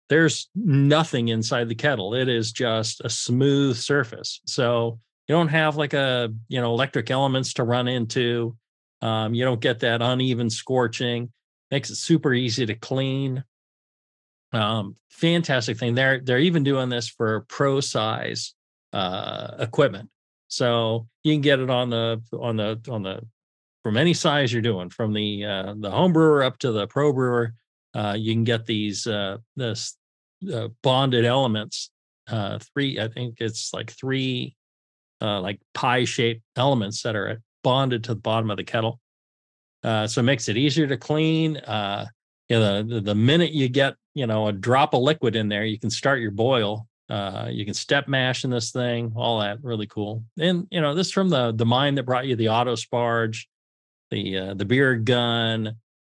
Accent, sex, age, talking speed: American, male, 40-59, 180 wpm